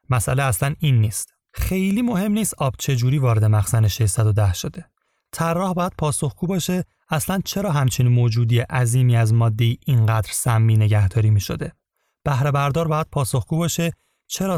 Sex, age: male, 30-49